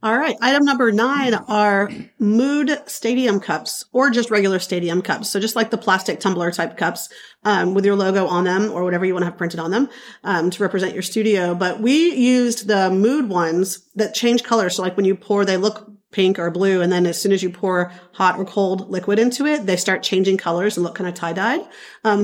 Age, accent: 40-59, American